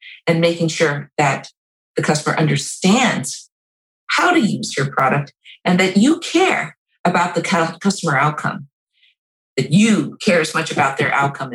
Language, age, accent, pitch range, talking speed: English, 50-69, American, 150-200 Hz, 145 wpm